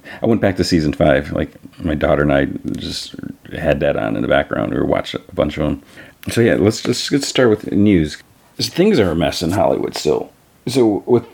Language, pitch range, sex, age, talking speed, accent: English, 75-90 Hz, male, 40-59, 230 wpm, American